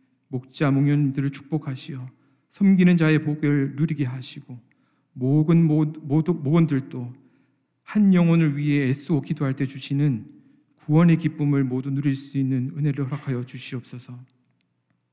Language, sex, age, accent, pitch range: Korean, male, 40-59, native, 130-150 Hz